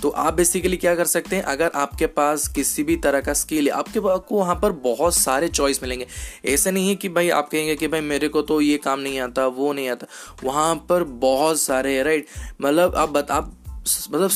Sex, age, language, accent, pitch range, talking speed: male, 20-39, Hindi, native, 140-170 Hz, 215 wpm